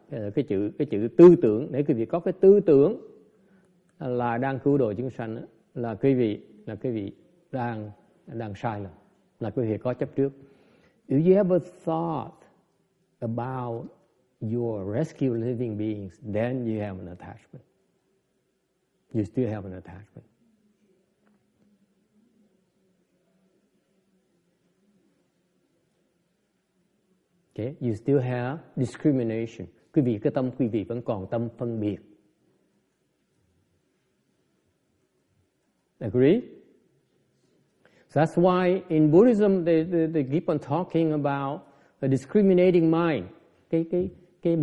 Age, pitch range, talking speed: 50-69, 120-175 Hz, 120 wpm